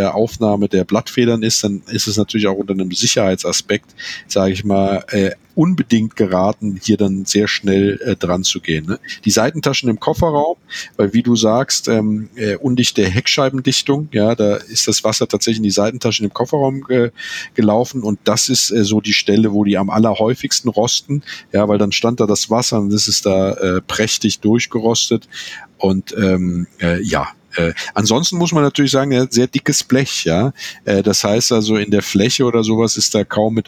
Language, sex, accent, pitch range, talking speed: German, male, German, 100-120 Hz, 190 wpm